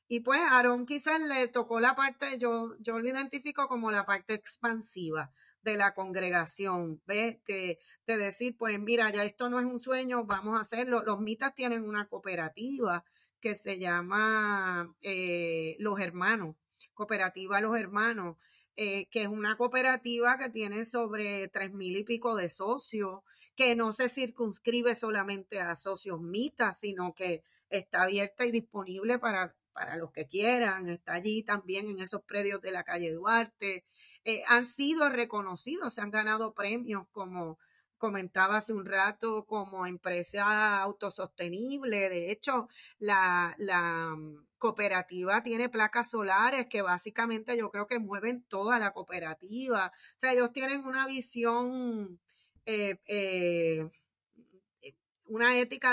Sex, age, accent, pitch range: female, 30-49, American, 190-240 Hz